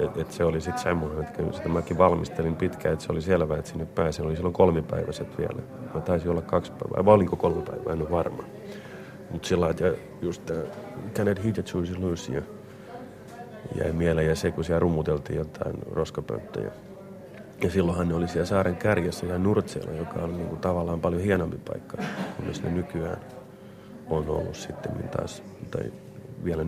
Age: 30-49